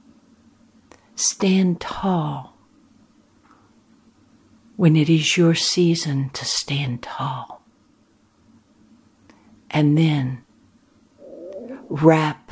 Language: English